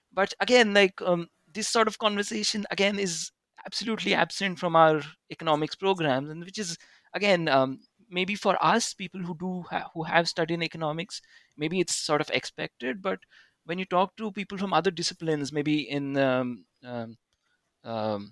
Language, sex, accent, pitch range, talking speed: English, male, Indian, 140-190 Hz, 170 wpm